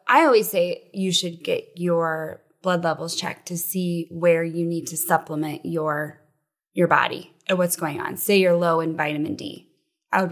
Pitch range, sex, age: 165-190 Hz, female, 20-39